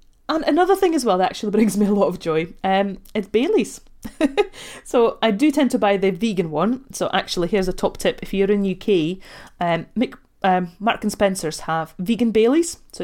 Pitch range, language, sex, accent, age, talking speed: 185-265 Hz, English, female, British, 30-49, 205 wpm